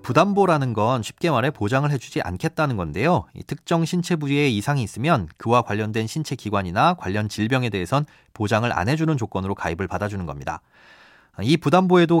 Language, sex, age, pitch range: Korean, male, 30-49, 110-160 Hz